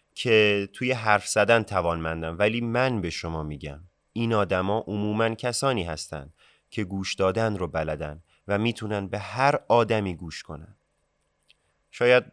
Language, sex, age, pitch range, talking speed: Persian, male, 30-49, 95-120 Hz, 135 wpm